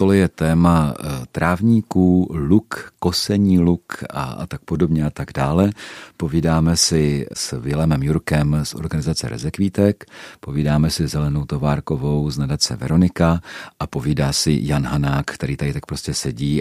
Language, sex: Czech, male